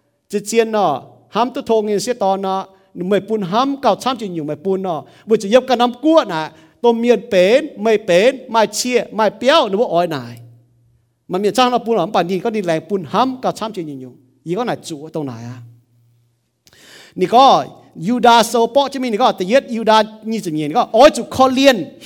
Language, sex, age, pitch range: English, male, 50-69, 175-260 Hz